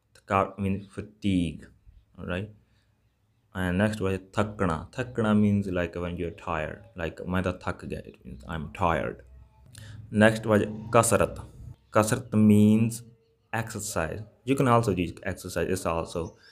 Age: 20-39